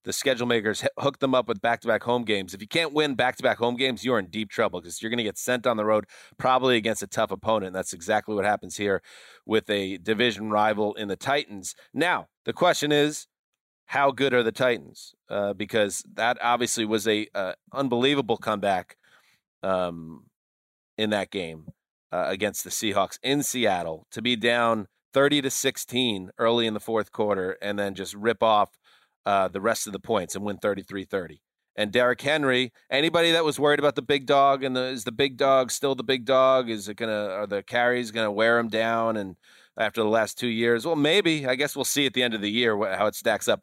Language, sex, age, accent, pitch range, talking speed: English, male, 30-49, American, 100-130 Hz, 215 wpm